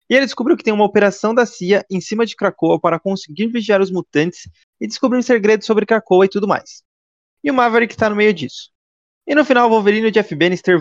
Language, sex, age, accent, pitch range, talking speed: Portuguese, male, 20-39, Brazilian, 155-215 Hz, 230 wpm